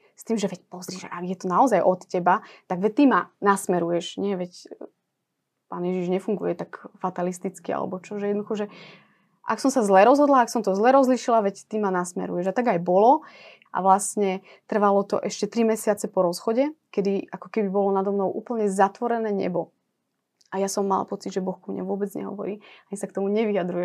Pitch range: 190-220 Hz